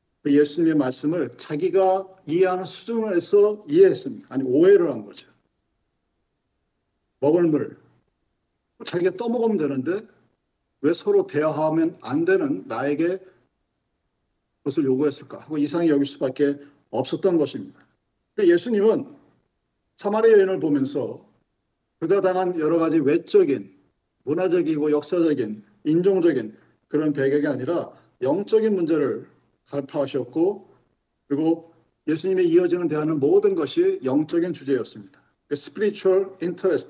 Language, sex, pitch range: Korean, male, 150-225 Hz